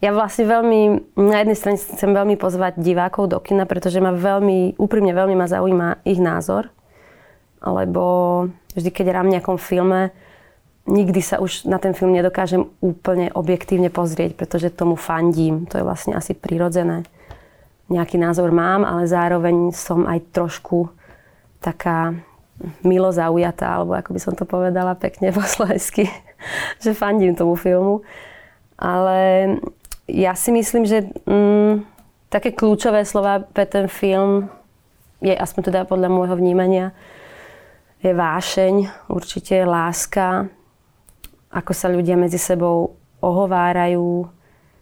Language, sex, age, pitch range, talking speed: Slovak, female, 20-39, 175-195 Hz, 130 wpm